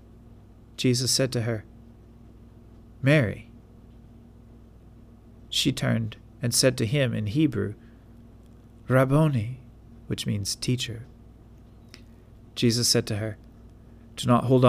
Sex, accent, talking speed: male, American, 100 wpm